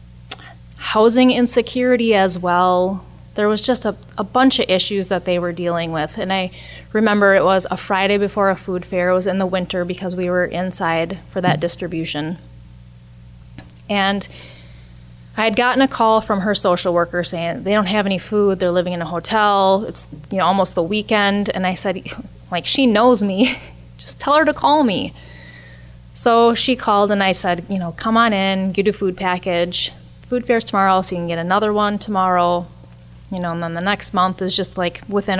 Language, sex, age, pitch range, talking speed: English, female, 20-39, 170-205 Hz, 195 wpm